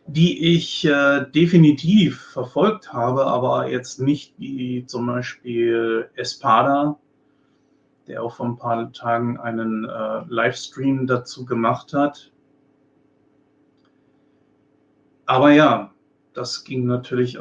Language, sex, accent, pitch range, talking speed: German, male, German, 120-145 Hz, 105 wpm